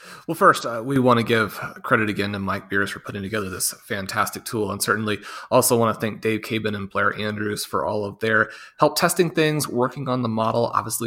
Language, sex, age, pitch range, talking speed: English, male, 30-49, 110-125 Hz, 220 wpm